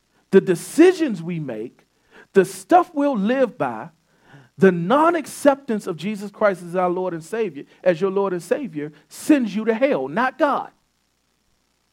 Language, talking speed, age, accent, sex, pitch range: English, 150 wpm, 40-59, American, male, 180-260 Hz